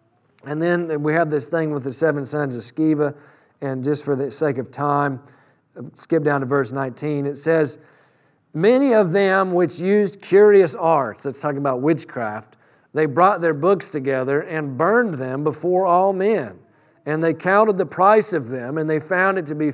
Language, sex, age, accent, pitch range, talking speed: English, male, 50-69, American, 145-185 Hz, 185 wpm